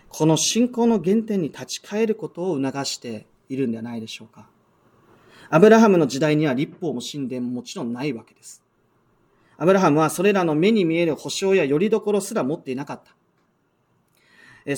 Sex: male